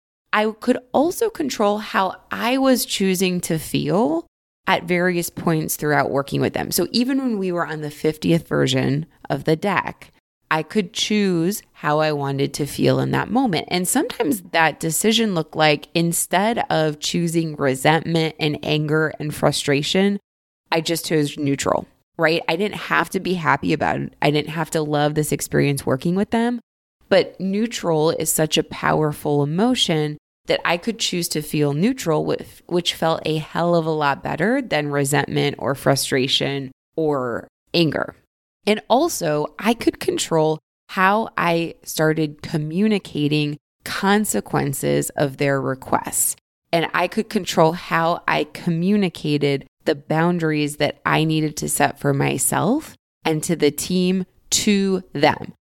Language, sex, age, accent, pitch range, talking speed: English, female, 20-39, American, 150-195 Hz, 150 wpm